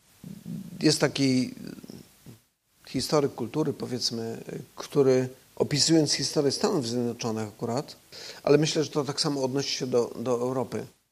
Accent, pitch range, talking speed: native, 125-155 Hz, 120 wpm